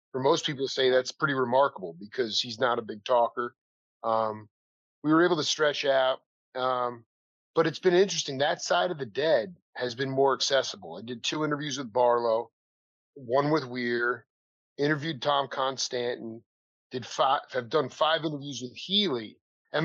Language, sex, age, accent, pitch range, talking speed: English, male, 40-59, American, 120-165 Hz, 170 wpm